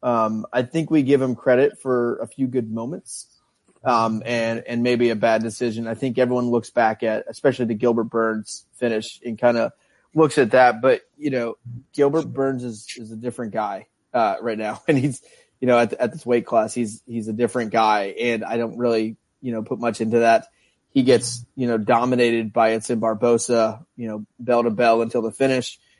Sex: male